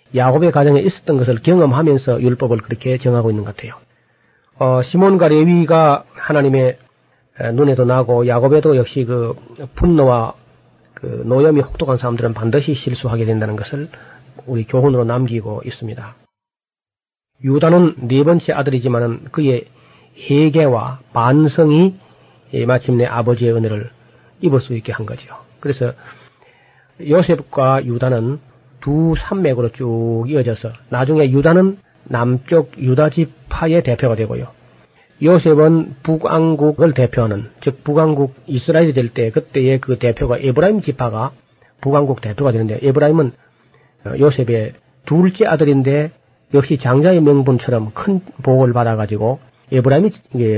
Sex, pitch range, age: male, 120-150 Hz, 40-59